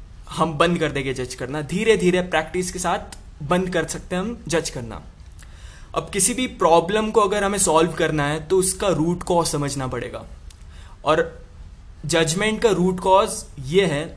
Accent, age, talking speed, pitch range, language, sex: native, 20-39, 175 wpm, 130-180 Hz, Hindi, male